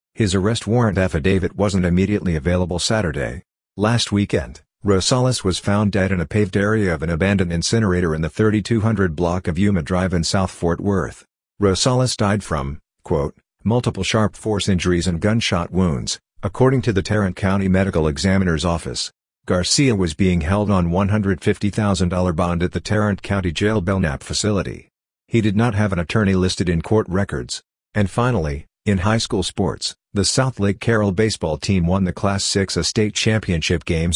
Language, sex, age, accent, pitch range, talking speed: English, male, 50-69, American, 90-105 Hz, 165 wpm